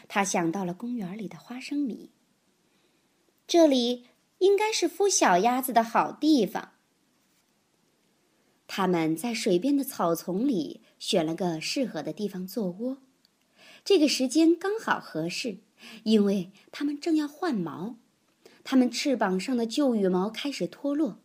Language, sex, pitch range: Chinese, male, 195-285 Hz